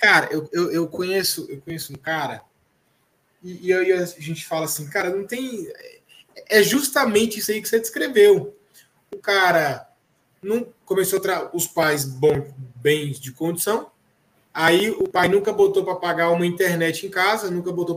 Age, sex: 20-39, male